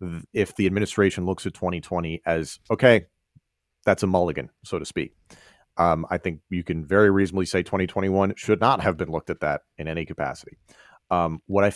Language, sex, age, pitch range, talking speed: English, male, 40-59, 85-110 Hz, 185 wpm